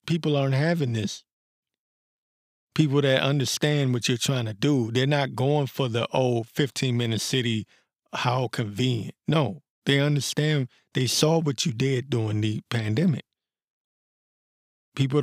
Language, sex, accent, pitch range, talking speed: English, male, American, 115-140 Hz, 140 wpm